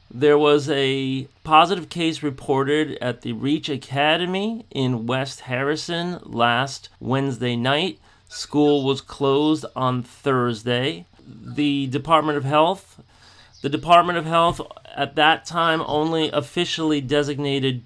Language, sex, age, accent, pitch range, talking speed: English, male, 40-59, American, 130-160 Hz, 120 wpm